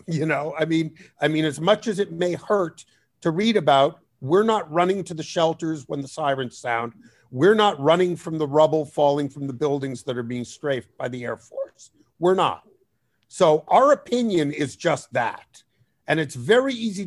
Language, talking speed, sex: English, 195 wpm, male